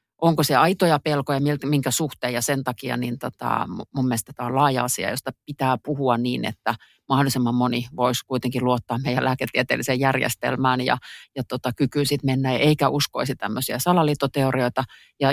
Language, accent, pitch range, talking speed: Finnish, native, 125-150 Hz, 165 wpm